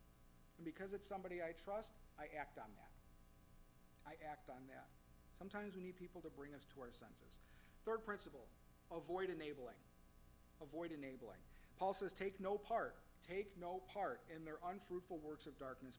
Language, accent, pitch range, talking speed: English, American, 125-195 Hz, 165 wpm